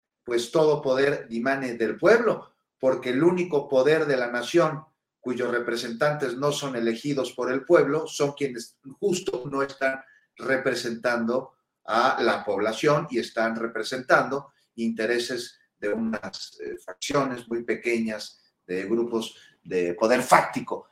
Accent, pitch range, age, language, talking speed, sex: Mexican, 110-140 Hz, 40-59, Spanish, 130 wpm, male